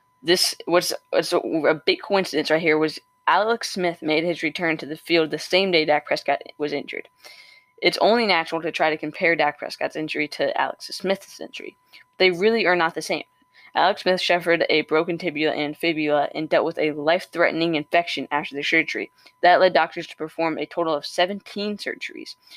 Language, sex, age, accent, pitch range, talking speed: English, female, 10-29, American, 155-180 Hz, 185 wpm